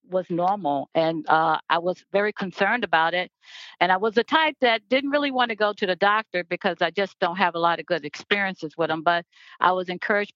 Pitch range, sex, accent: 170-205 Hz, female, American